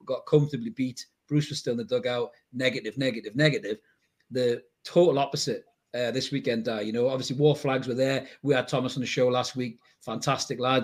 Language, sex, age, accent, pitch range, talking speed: English, male, 40-59, British, 125-145 Hz, 200 wpm